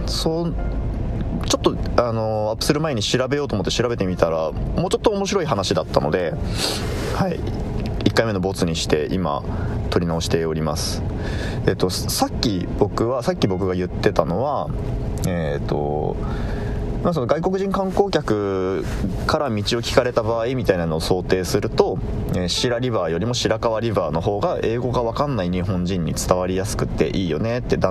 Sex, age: male, 20-39